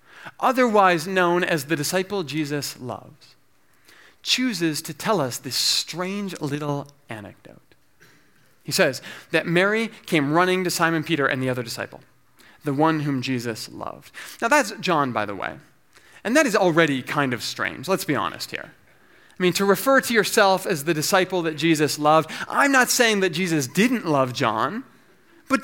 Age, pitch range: 30-49, 145-200 Hz